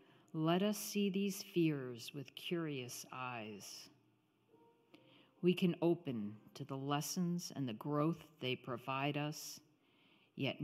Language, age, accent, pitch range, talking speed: English, 50-69, American, 125-155 Hz, 120 wpm